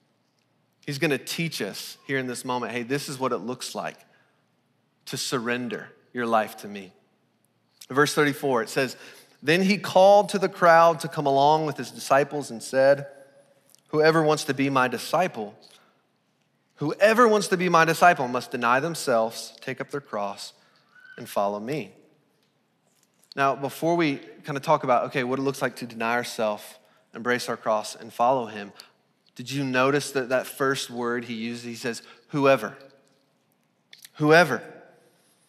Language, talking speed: English, 160 wpm